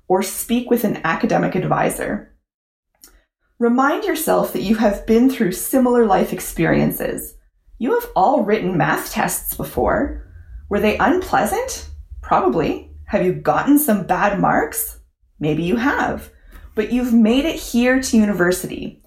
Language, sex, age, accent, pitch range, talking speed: English, female, 20-39, American, 160-255 Hz, 135 wpm